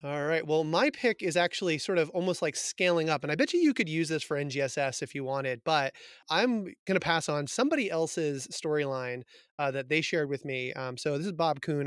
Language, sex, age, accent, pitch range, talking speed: English, male, 30-49, American, 135-165 Hz, 235 wpm